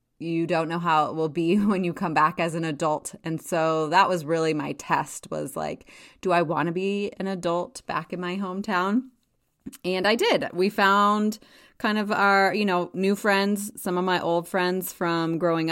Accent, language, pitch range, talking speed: American, English, 160-195 Hz, 200 wpm